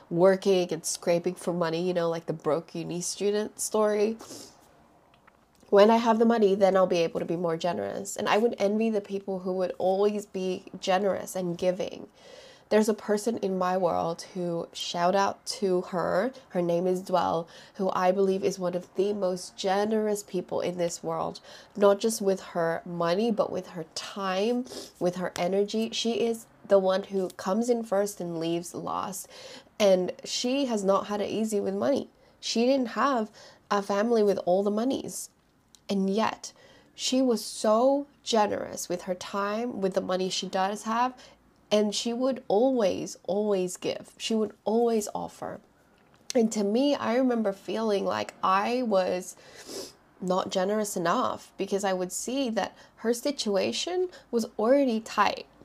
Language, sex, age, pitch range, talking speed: English, female, 20-39, 185-225 Hz, 165 wpm